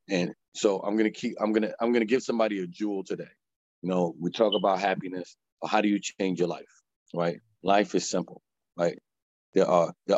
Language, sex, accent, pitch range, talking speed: English, male, American, 95-120 Hz, 205 wpm